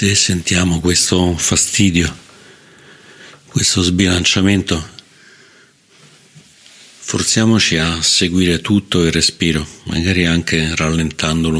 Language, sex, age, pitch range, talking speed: Italian, male, 50-69, 80-95 Hz, 80 wpm